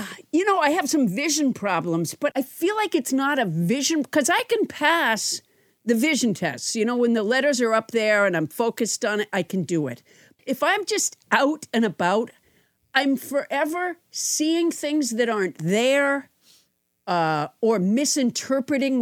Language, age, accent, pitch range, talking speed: English, 50-69, American, 200-280 Hz, 175 wpm